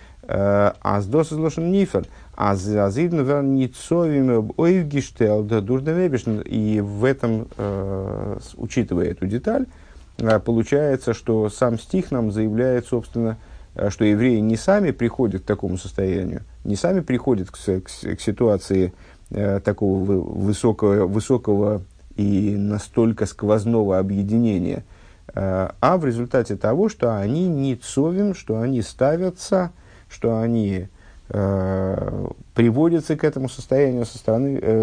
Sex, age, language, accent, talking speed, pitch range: male, 50-69, Russian, native, 95 wpm, 95-130 Hz